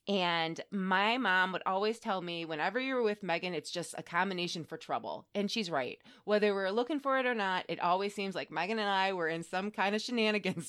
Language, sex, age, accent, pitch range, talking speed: English, female, 20-39, American, 165-215 Hz, 225 wpm